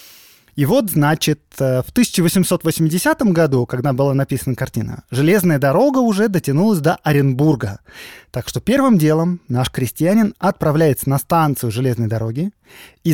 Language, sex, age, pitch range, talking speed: Russian, male, 20-39, 125-180 Hz, 130 wpm